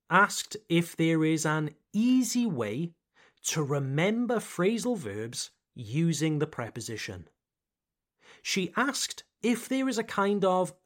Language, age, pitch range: French, 30-49, 150-210 Hz